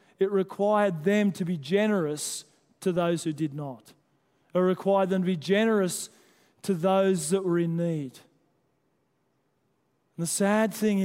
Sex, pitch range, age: male, 165-195 Hz, 40-59